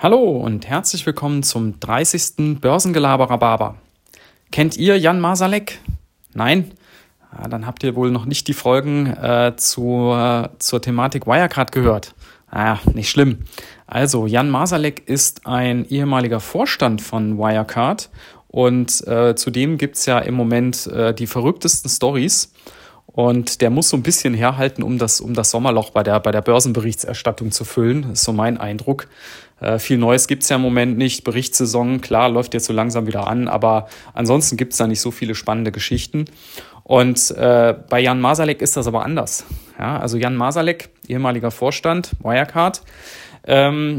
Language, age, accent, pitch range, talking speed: German, 30-49, German, 115-140 Hz, 160 wpm